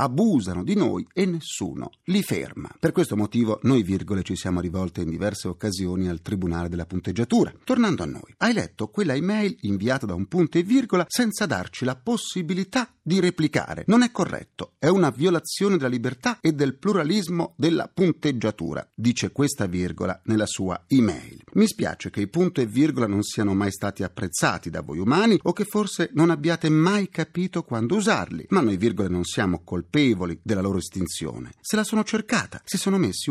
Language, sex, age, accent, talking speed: Italian, male, 40-59, native, 180 wpm